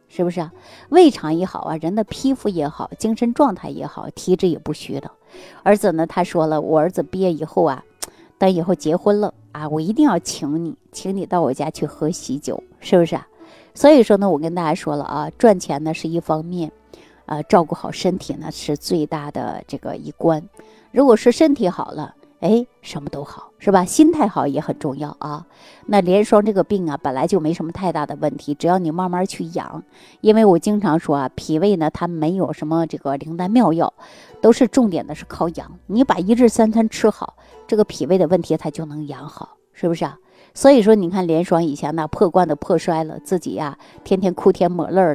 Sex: female